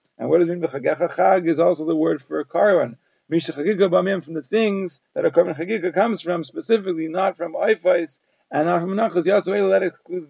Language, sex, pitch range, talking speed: English, male, 155-185 Hz, 200 wpm